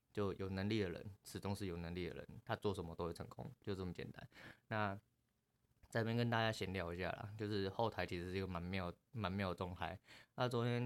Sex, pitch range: male, 90-105 Hz